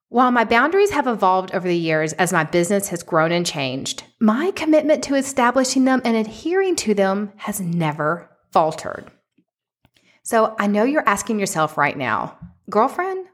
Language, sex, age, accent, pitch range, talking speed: English, female, 40-59, American, 190-300 Hz, 160 wpm